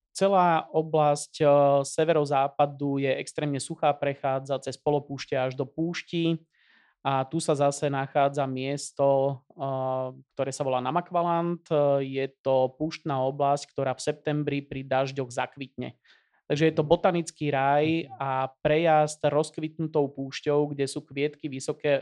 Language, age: Slovak, 20-39